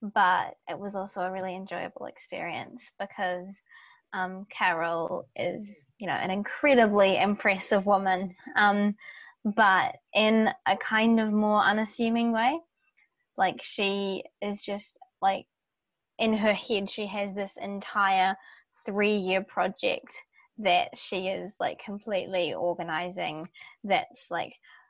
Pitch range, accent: 190-220 Hz, Australian